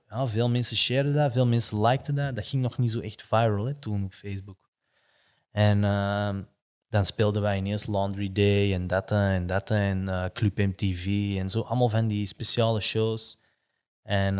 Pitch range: 105-140 Hz